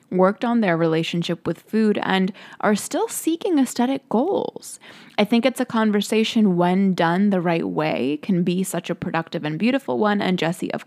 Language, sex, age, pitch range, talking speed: English, female, 20-39, 180-220 Hz, 180 wpm